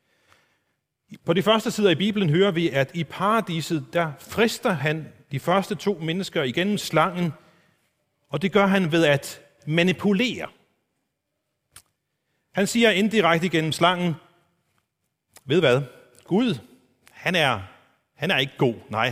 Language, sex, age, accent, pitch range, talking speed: Danish, male, 40-59, native, 150-195 Hz, 130 wpm